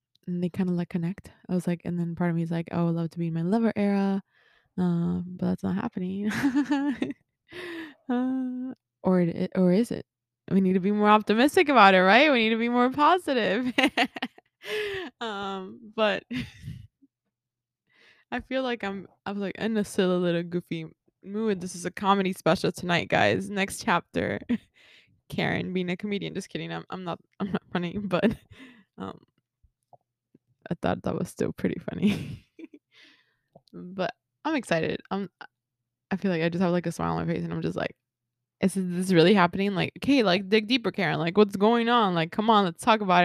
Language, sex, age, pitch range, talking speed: English, female, 20-39, 170-215 Hz, 190 wpm